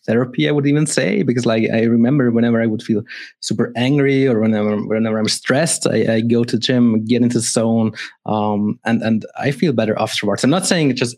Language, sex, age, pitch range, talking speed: English, male, 20-39, 110-140 Hz, 215 wpm